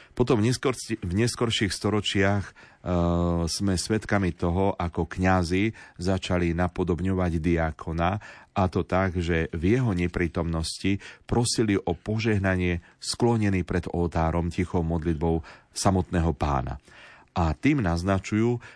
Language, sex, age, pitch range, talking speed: Slovak, male, 40-59, 85-105 Hz, 100 wpm